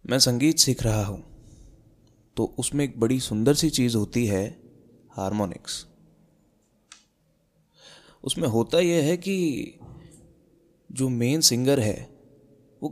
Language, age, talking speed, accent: Hindi, 20-39, 115 wpm, native